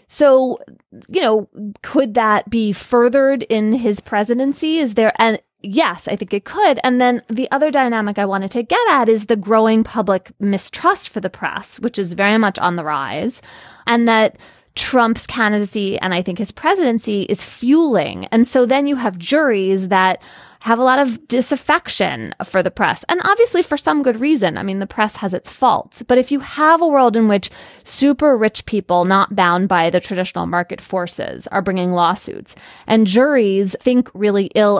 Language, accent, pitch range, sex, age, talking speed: English, American, 190-260 Hz, female, 20-39, 185 wpm